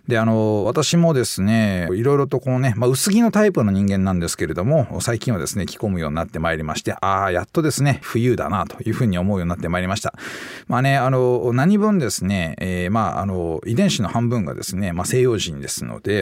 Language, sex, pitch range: Japanese, male, 95-155 Hz